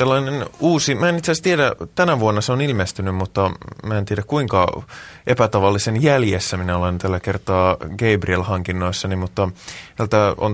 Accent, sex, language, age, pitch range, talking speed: native, male, Finnish, 20-39, 95-125 Hz, 160 wpm